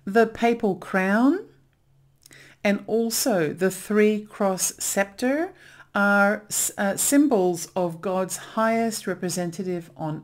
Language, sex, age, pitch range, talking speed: English, female, 50-69, 165-210 Hz, 100 wpm